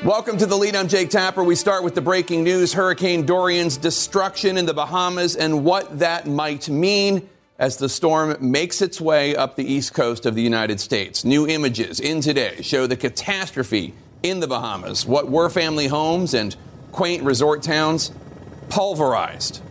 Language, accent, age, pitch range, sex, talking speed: English, American, 40-59, 120-160 Hz, male, 175 wpm